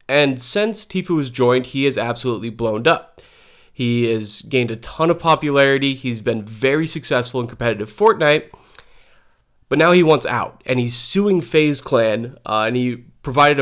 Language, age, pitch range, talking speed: English, 30-49, 120-155 Hz, 170 wpm